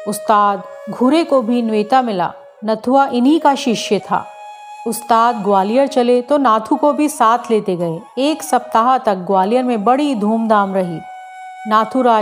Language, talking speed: Hindi, 145 wpm